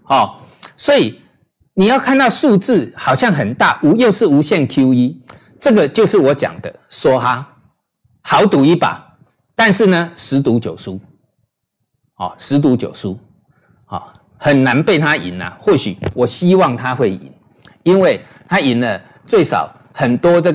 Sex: male